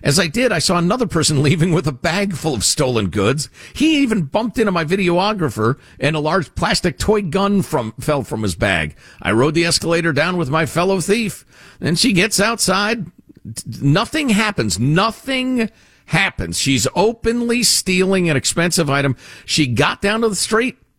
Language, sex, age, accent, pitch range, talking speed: English, male, 50-69, American, 130-190 Hz, 175 wpm